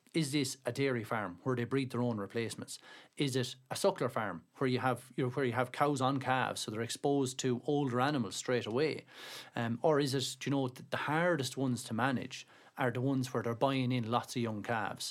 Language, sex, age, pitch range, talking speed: English, male, 30-49, 120-135 Hz, 225 wpm